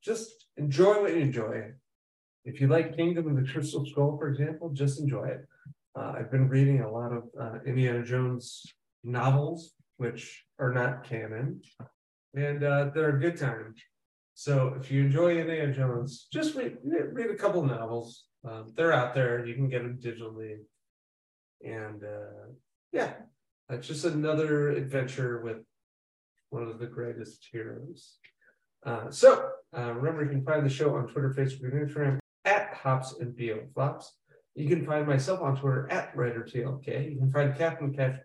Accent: American